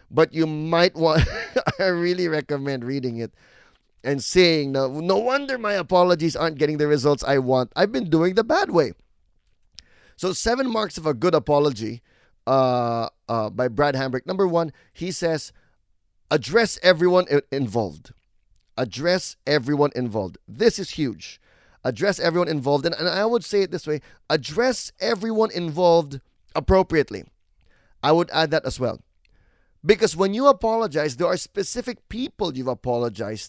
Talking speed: 150 wpm